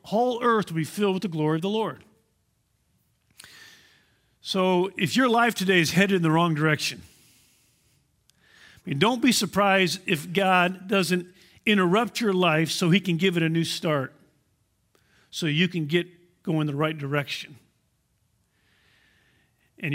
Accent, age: American, 50-69